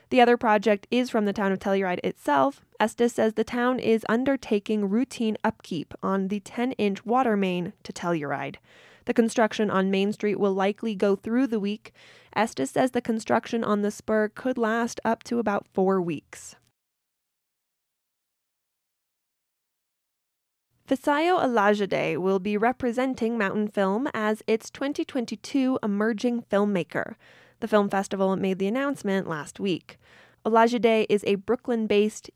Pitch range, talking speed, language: 195-235 Hz, 140 wpm, English